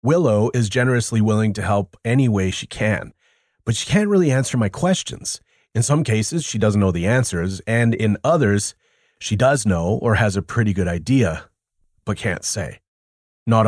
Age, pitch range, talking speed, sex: 30-49, 100-125 Hz, 180 wpm, male